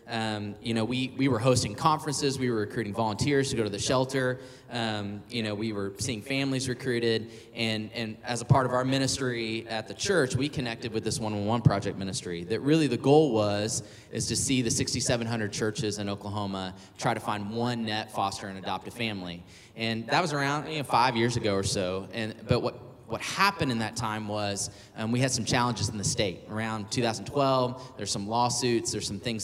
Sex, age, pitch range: male, 20-39, 105-125 Hz